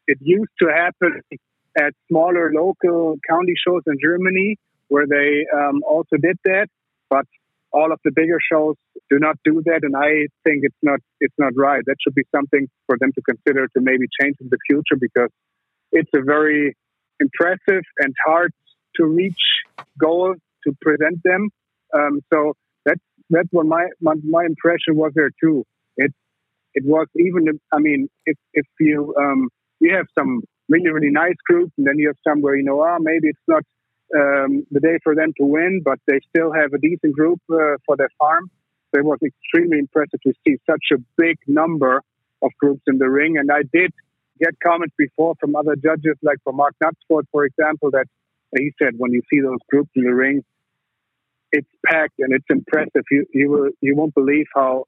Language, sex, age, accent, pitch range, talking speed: Danish, male, 50-69, German, 140-165 Hz, 190 wpm